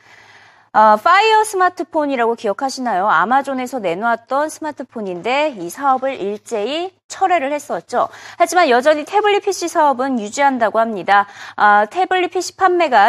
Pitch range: 215-325 Hz